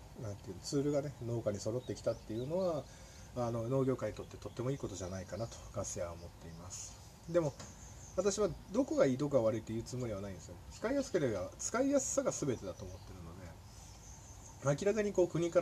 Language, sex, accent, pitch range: Japanese, male, native, 100-135 Hz